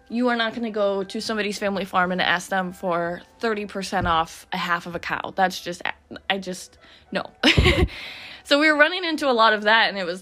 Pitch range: 180-230 Hz